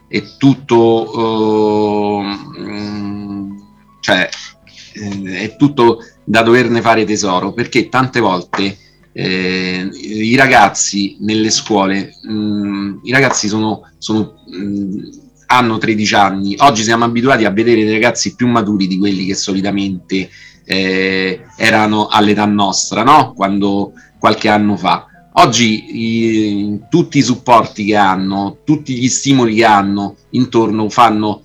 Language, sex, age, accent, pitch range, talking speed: Italian, male, 40-59, native, 100-115 Hz, 105 wpm